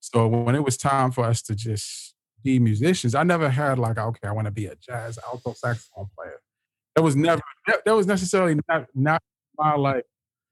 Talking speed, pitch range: 200 wpm, 115-140 Hz